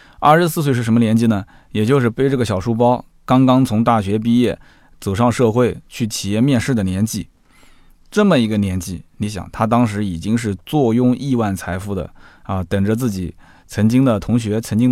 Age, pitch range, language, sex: 20-39, 95-130 Hz, Chinese, male